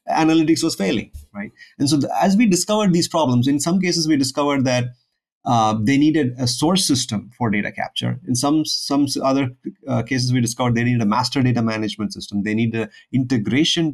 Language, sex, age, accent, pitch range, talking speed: English, male, 30-49, Indian, 115-155 Hz, 200 wpm